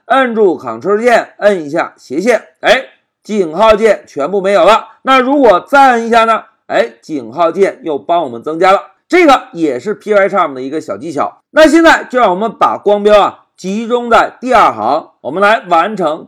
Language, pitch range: Chinese, 205-280 Hz